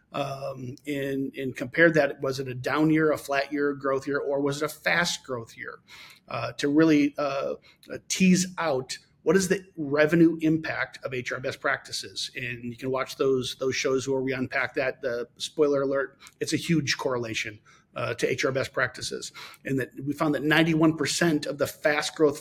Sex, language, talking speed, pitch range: male, English, 185 wpm, 135-165 Hz